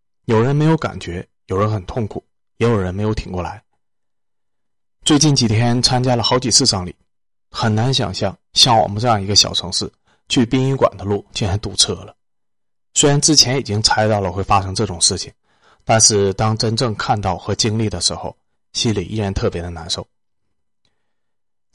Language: Chinese